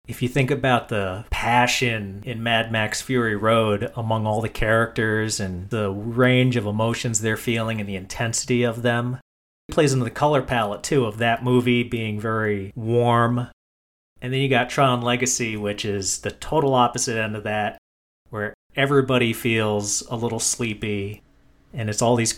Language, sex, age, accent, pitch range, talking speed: English, male, 30-49, American, 110-130 Hz, 170 wpm